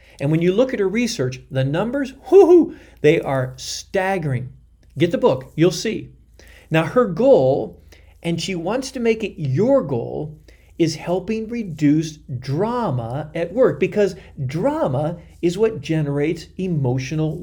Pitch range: 130-185 Hz